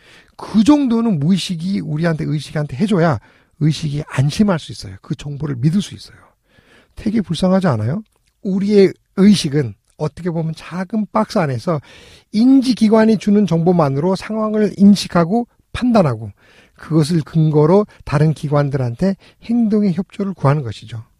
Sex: male